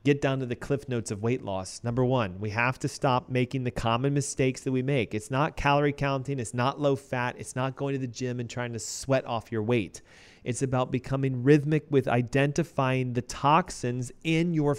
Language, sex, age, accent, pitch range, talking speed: English, male, 30-49, American, 115-145 Hz, 215 wpm